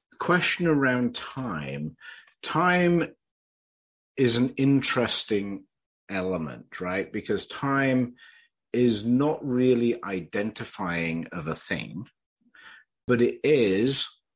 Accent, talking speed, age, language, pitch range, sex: British, 90 wpm, 50-69, English, 90-120 Hz, male